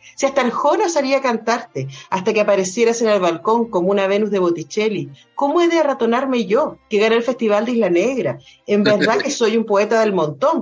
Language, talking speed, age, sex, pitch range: Spanish, 210 wpm, 40-59, female, 190-230 Hz